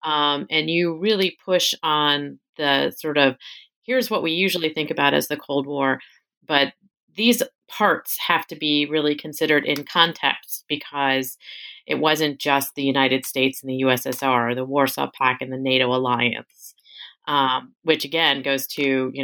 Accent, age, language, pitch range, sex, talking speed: American, 30-49, English, 140-180 Hz, female, 165 wpm